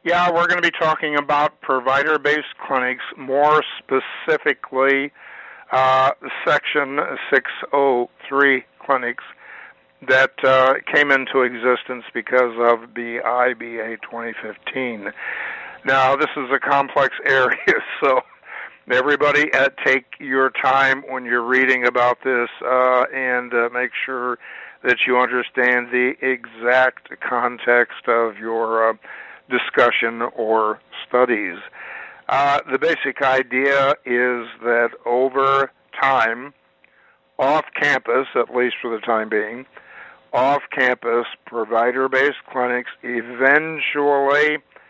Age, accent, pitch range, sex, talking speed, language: 50-69, American, 120-135 Hz, male, 105 wpm, English